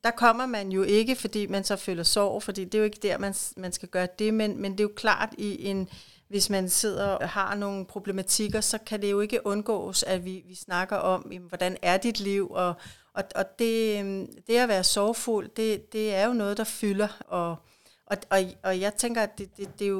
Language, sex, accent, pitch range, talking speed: Danish, female, native, 195-225 Hz, 215 wpm